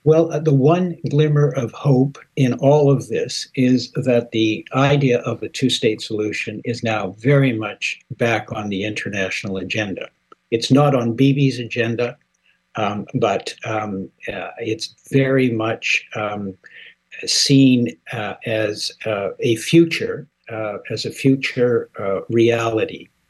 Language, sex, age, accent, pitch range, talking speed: English, male, 60-79, American, 110-135 Hz, 135 wpm